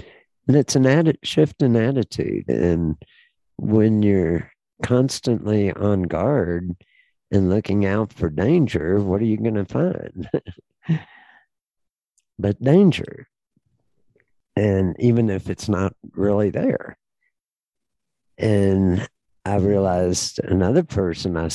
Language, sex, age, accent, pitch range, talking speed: English, male, 60-79, American, 95-125 Hz, 105 wpm